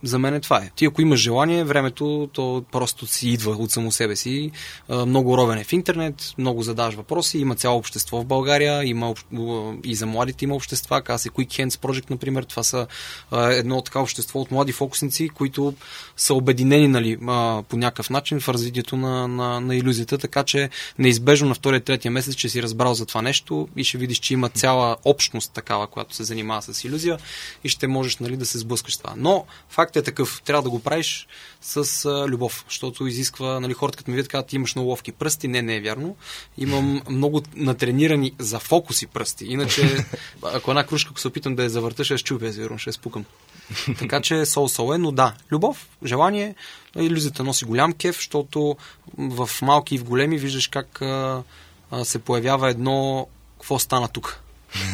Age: 20-39